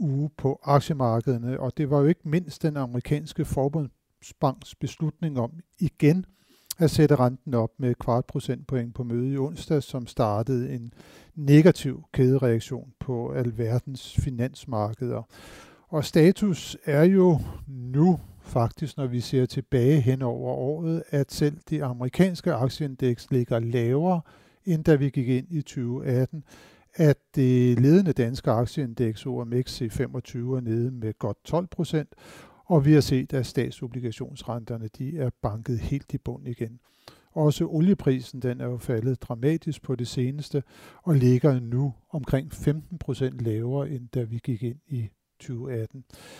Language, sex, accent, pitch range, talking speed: Danish, male, native, 125-150 Hz, 140 wpm